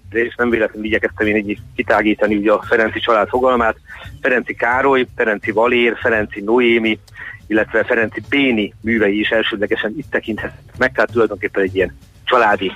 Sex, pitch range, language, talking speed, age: male, 100-115 Hz, Hungarian, 145 wpm, 30-49